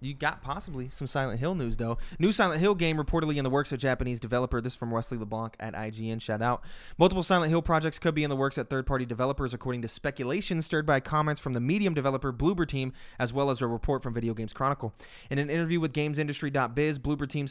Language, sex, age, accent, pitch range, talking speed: English, male, 20-39, American, 120-150 Hz, 235 wpm